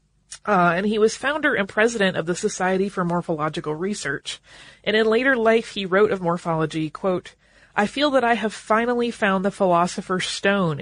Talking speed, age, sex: 175 wpm, 30-49, female